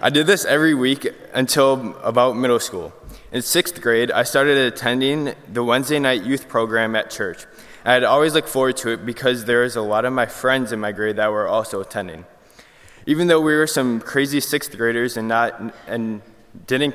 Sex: male